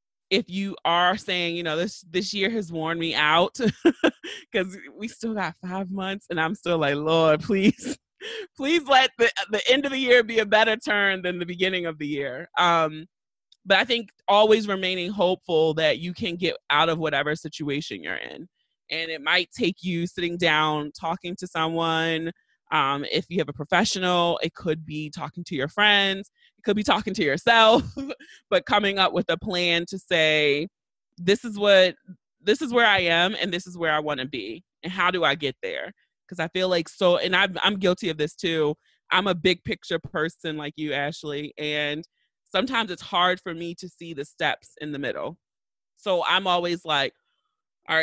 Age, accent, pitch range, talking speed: 20-39, American, 160-205 Hz, 195 wpm